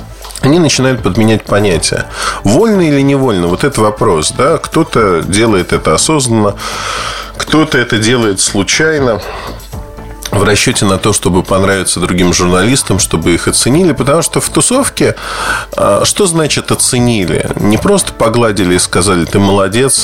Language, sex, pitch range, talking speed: Russian, male, 95-130 Hz, 130 wpm